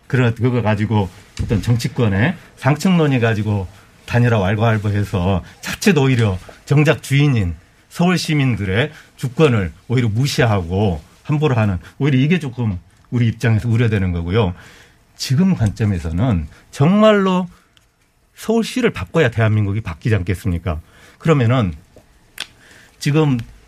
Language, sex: Korean, male